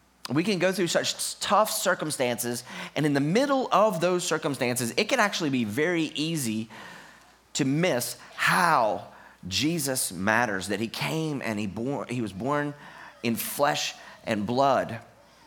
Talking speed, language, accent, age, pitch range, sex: 145 wpm, English, American, 30-49, 115-165 Hz, male